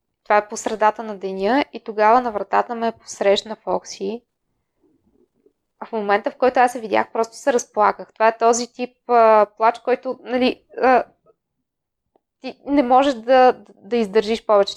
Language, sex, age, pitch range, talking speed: Bulgarian, female, 20-39, 215-255 Hz, 165 wpm